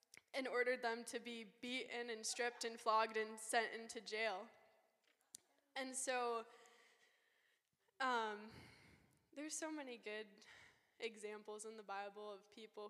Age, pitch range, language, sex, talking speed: 10-29, 215-255 Hz, English, female, 125 wpm